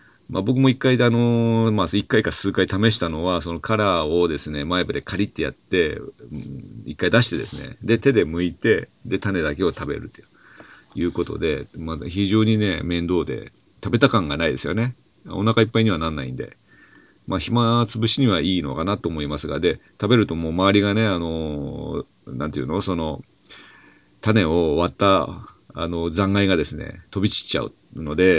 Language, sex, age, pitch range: Japanese, male, 40-59, 85-110 Hz